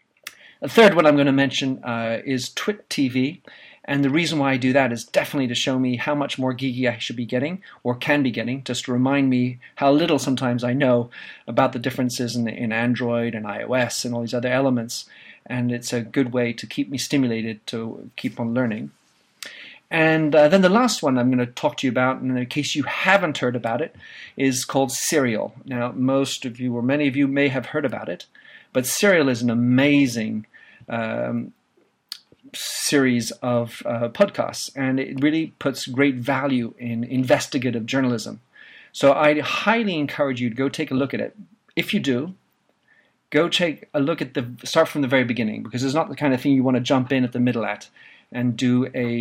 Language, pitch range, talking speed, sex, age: English, 120-140 Hz, 205 wpm, male, 40-59